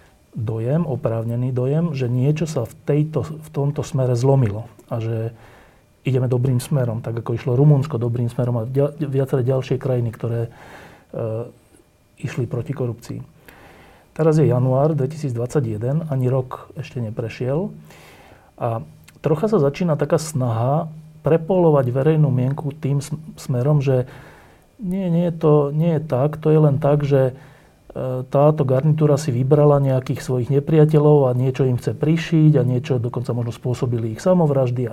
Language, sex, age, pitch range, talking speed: Slovak, male, 40-59, 120-150 Hz, 140 wpm